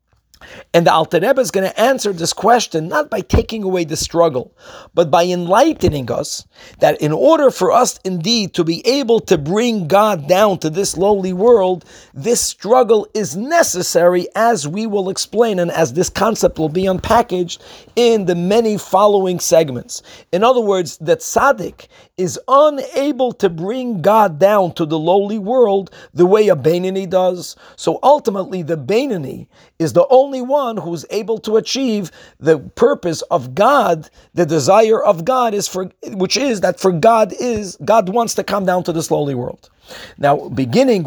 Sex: male